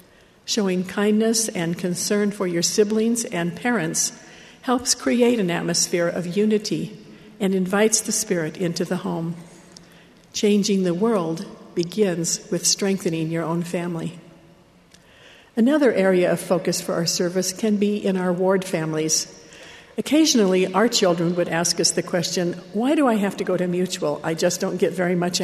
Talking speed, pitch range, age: 155 wpm, 175-215 Hz, 60-79